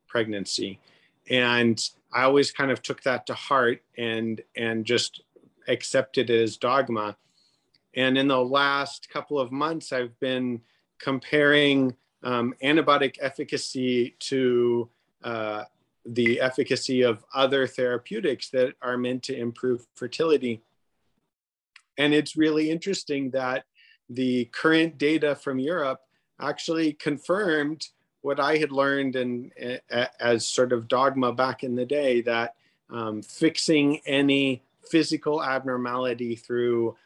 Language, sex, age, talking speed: English, male, 40-59, 120 wpm